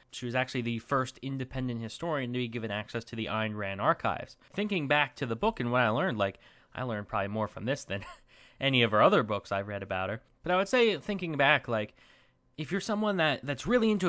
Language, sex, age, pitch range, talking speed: English, male, 20-39, 115-150 Hz, 240 wpm